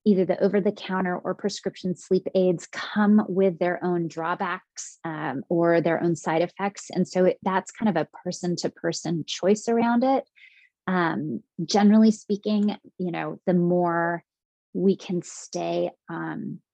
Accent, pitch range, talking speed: American, 170-205 Hz, 145 wpm